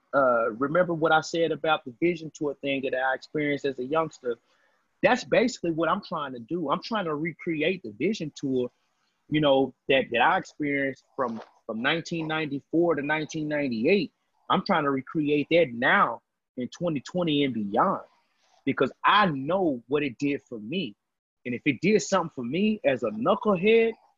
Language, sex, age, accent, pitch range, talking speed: English, male, 30-49, American, 140-175 Hz, 195 wpm